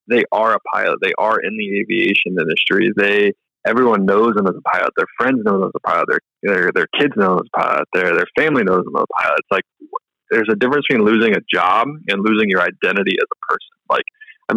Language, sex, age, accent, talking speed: English, male, 20-39, American, 245 wpm